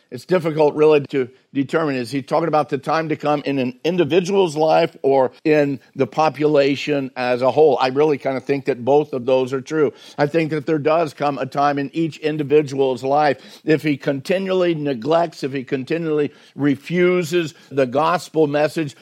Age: 60-79